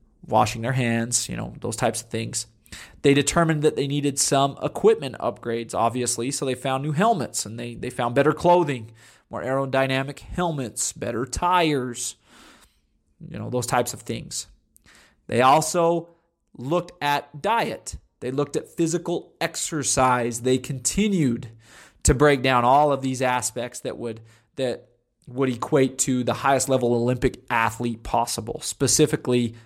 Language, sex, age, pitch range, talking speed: English, male, 20-39, 120-150 Hz, 145 wpm